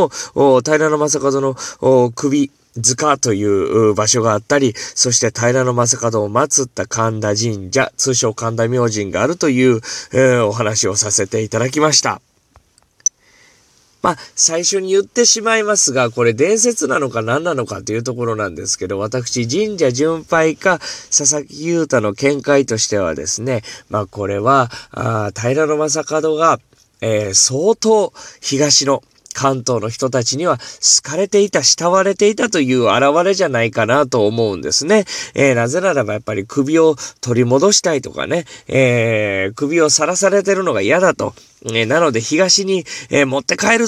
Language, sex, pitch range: Japanese, male, 115-155 Hz